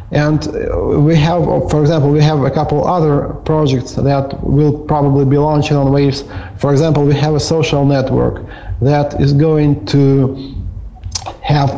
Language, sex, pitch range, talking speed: English, male, 130-155 Hz, 155 wpm